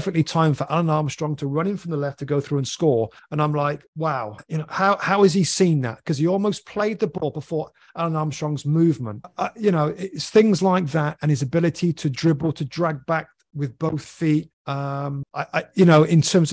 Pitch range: 130-160 Hz